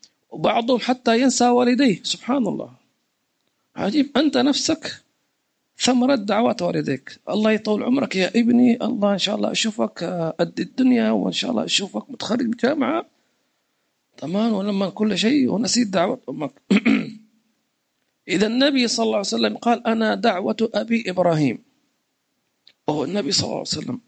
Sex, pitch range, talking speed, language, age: male, 205-250 Hz, 135 wpm, English, 50-69